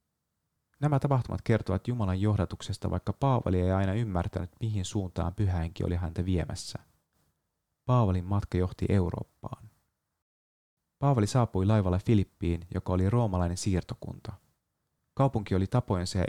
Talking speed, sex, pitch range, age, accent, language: 120 wpm, male, 90-110 Hz, 30-49, native, Finnish